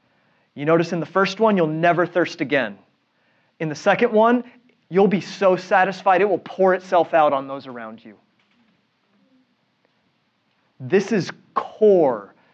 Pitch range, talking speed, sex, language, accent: 145-195 Hz, 145 wpm, male, English, American